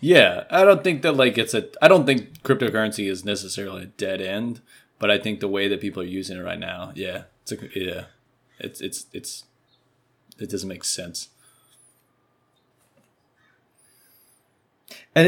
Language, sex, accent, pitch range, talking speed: English, male, American, 100-125 Hz, 160 wpm